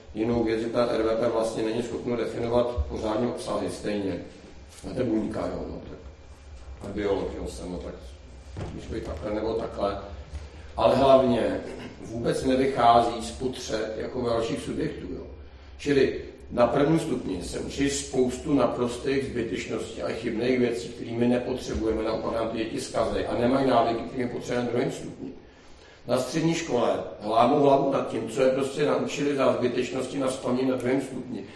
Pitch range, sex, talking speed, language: 110-130 Hz, male, 145 wpm, Czech